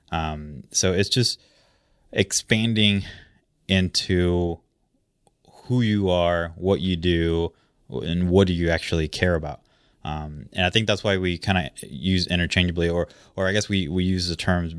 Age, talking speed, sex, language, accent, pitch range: 20-39, 160 wpm, male, English, American, 85-95 Hz